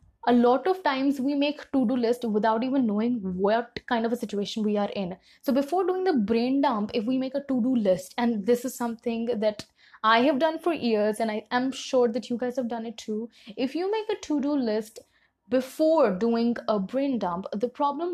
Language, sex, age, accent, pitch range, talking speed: Hindi, female, 20-39, native, 220-270 Hz, 225 wpm